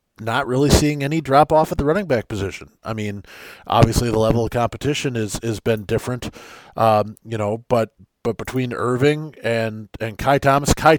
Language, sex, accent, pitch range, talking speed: English, male, American, 110-140 Hz, 185 wpm